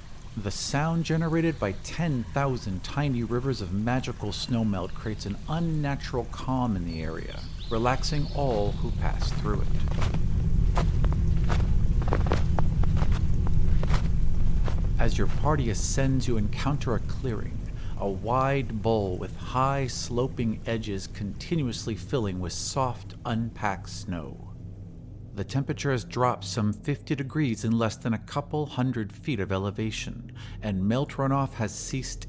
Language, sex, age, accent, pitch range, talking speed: English, male, 50-69, American, 95-130 Hz, 120 wpm